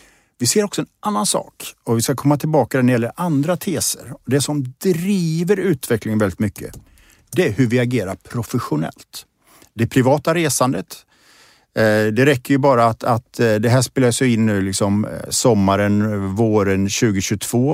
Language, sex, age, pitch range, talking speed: Swedish, male, 50-69, 105-140 Hz, 155 wpm